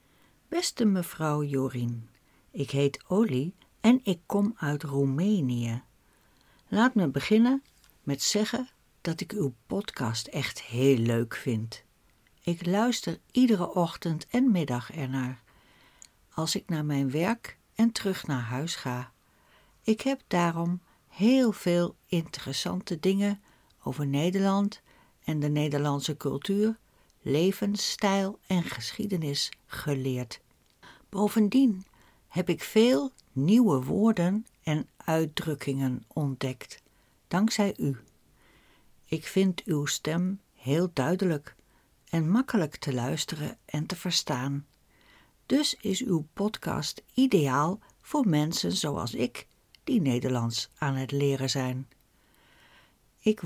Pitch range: 140-200 Hz